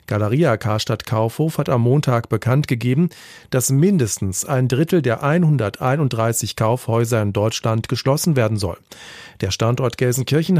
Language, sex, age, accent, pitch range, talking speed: German, male, 40-59, German, 115-150 Hz, 125 wpm